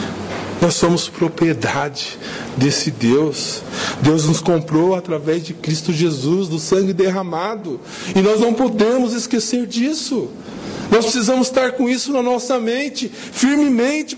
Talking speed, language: 125 wpm, Portuguese